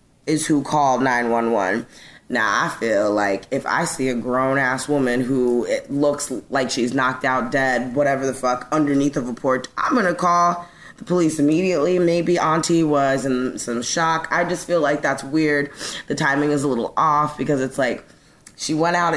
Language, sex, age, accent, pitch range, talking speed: English, female, 20-39, American, 130-165 Hz, 180 wpm